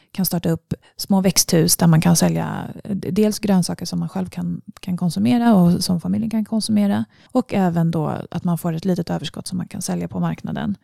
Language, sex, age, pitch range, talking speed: Swedish, female, 30-49, 165-200 Hz, 205 wpm